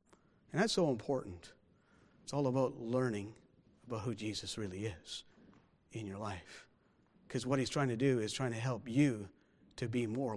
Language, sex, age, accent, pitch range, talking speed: English, male, 50-69, American, 110-150 Hz, 170 wpm